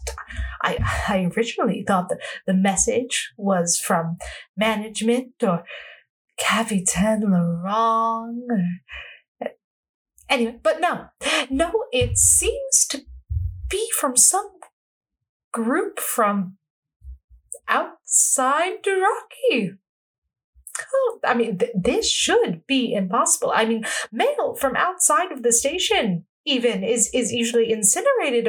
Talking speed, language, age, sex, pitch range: 100 wpm, English, 30-49, female, 185-300 Hz